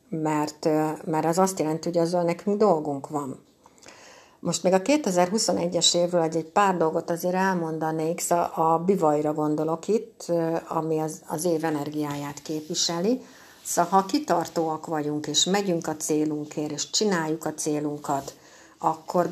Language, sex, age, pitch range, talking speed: Hungarian, female, 60-79, 155-190 Hz, 135 wpm